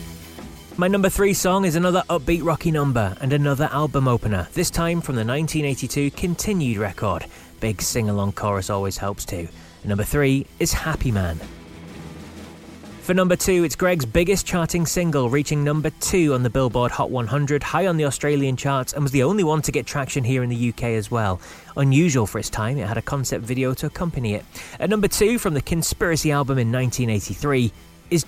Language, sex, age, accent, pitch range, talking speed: English, male, 20-39, British, 110-155 Hz, 185 wpm